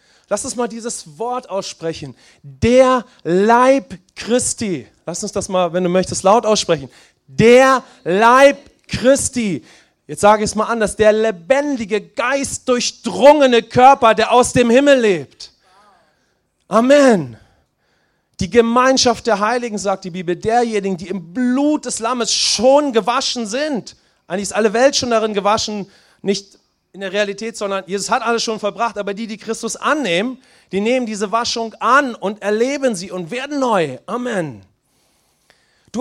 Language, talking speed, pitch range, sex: English, 150 wpm, 190-250 Hz, male